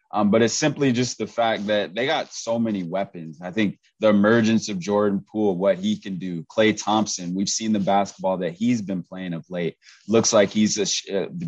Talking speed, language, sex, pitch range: 220 wpm, English, male, 95-110 Hz